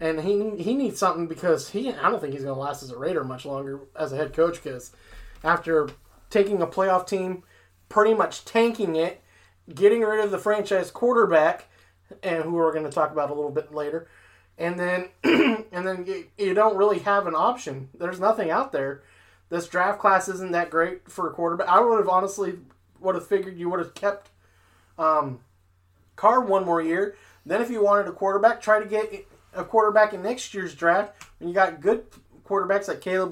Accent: American